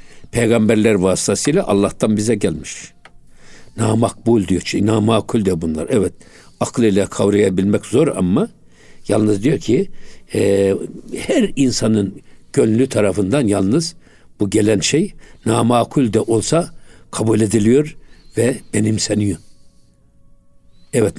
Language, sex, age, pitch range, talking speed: Turkish, male, 60-79, 95-120 Hz, 100 wpm